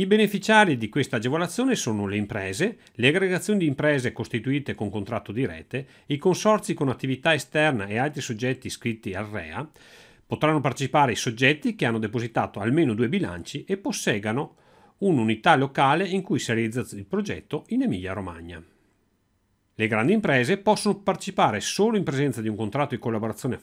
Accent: native